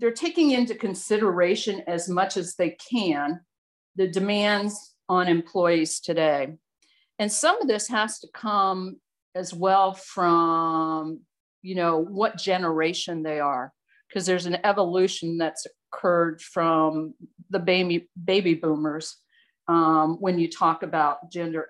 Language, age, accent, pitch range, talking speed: English, 50-69, American, 170-210 Hz, 125 wpm